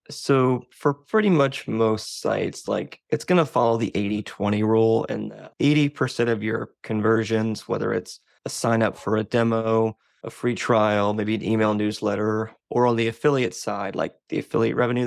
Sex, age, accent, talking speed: male, 20-39, American, 170 wpm